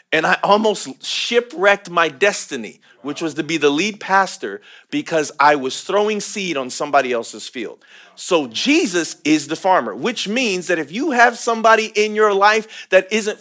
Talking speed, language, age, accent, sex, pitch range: 175 wpm, English, 40-59, American, male, 130-215 Hz